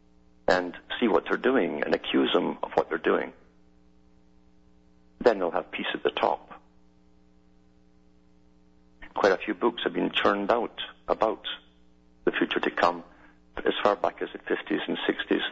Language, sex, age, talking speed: English, male, 50-69, 160 wpm